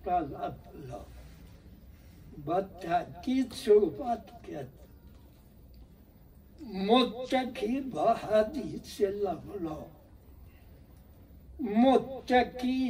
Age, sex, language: 60-79, male, Persian